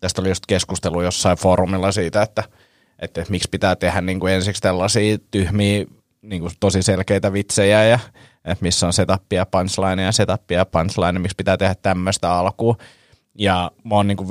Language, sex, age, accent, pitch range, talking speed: Finnish, male, 30-49, native, 90-105 Hz, 180 wpm